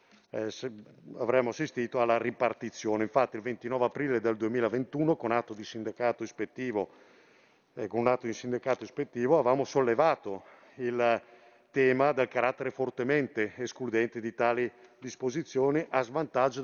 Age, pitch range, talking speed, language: 50-69, 110-130 Hz, 135 wpm, Italian